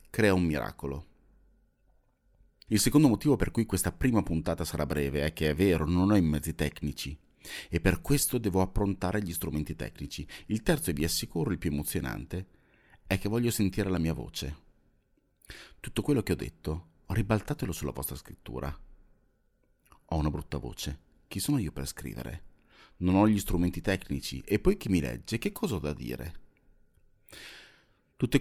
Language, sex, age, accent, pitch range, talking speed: Italian, male, 30-49, native, 75-110 Hz, 165 wpm